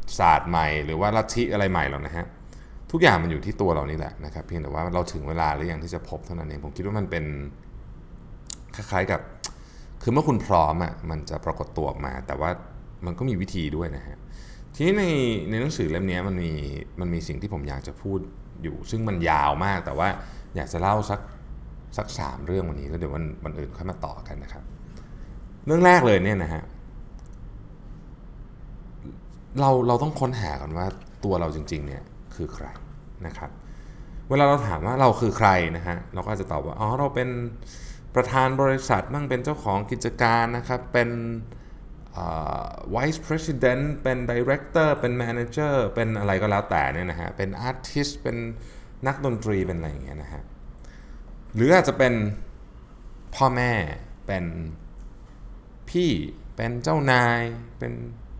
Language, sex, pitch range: Thai, male, 80-125 Hz